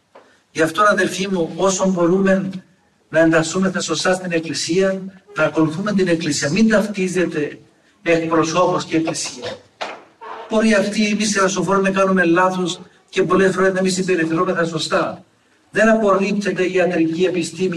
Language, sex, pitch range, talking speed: Greek, male, 160-190 Hz, 135 wpm